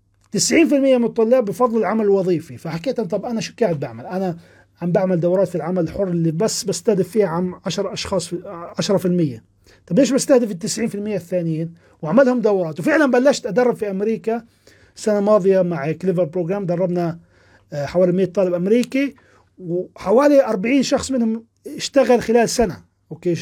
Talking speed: 155 wpm